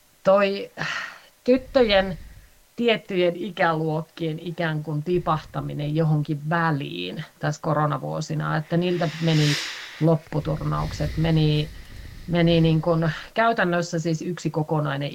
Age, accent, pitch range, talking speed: 30-49, native, 150-170 Hz, 90 wpm